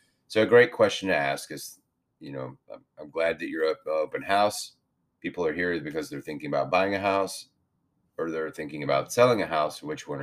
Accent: American